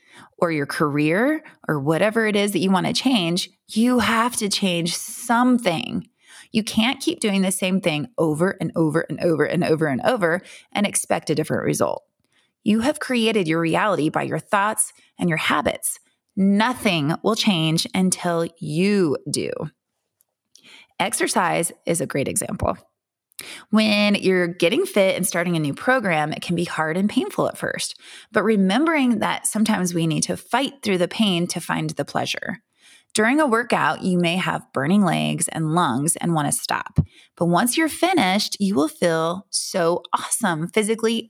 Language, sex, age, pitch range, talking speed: English, female, 20-39, 170-225 Hz, 170 wpm